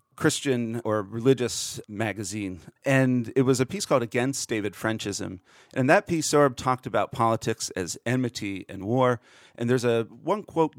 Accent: American